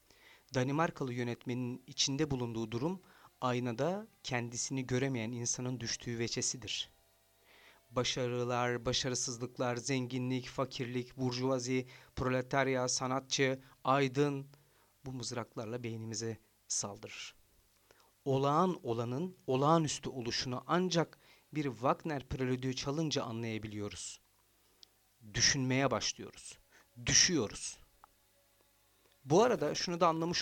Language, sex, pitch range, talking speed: Turkish, male, 115-140 Hz, 80 wpm